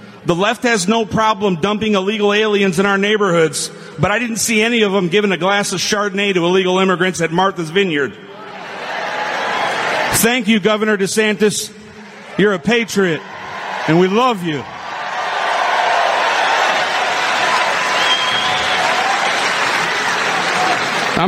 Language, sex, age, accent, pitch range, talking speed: English, male, 50-69, American, 175-215 Hz, 115 wpm